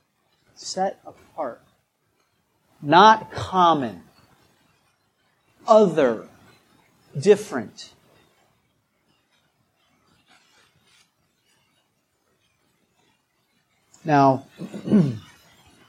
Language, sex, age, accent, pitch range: English, male, 40-59, American, 170-215 Hz